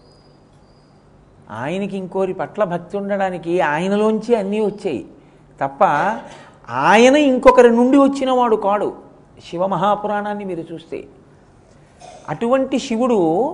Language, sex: Telugu, male